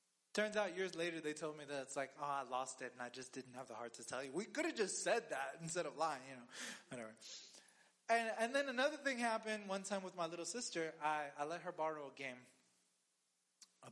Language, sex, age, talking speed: English, male, 20-39, 240 wpm